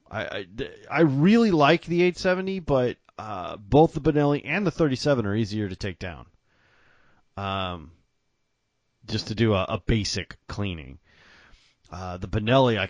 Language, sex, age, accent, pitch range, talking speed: English, male, 30-49, American, 90-115 Hz, 150 wpm